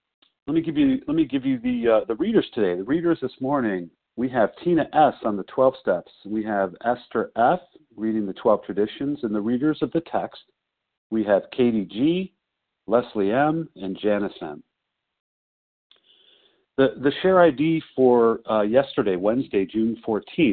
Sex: male